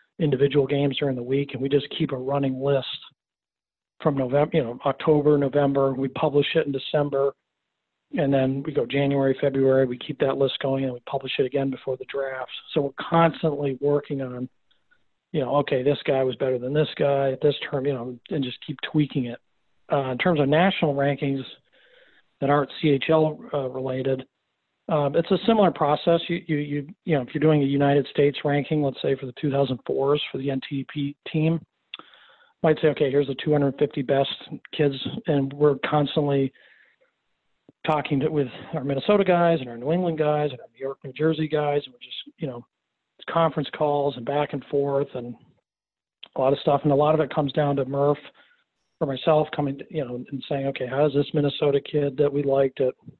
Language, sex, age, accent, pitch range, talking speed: English, male, 40-59, American, 135-150 Hz, 200 wpm